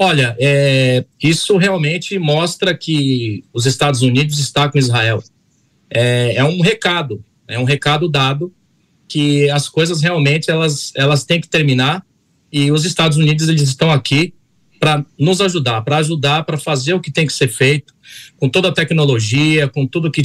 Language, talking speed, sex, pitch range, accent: Portuguese, 160 wpm, male, 130-160 Hz, Brazilian